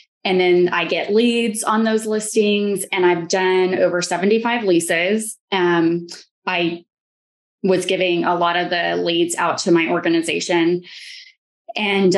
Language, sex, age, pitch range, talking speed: English, female, 20-39, 175-215 Hz, 140 wpm